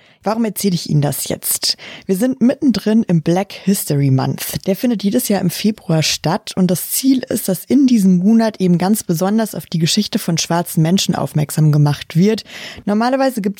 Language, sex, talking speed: German, female, 185 wpm